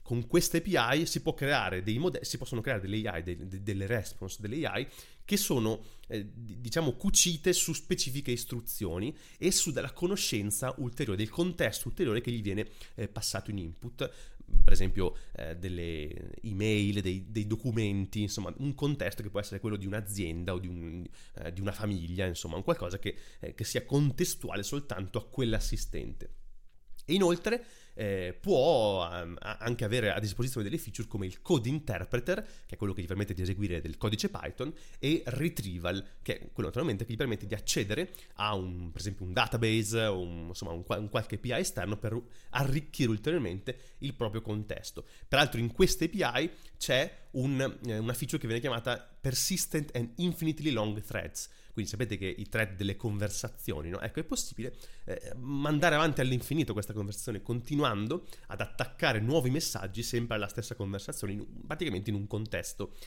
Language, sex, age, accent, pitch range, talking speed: Italian, male, 30-49, native, 100-135 Hz, 165 wpm